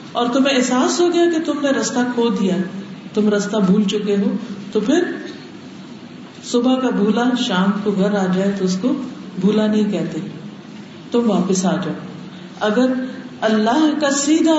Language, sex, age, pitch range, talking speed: Urdu, female, 50-69, 185-245 Hz, 165 wpm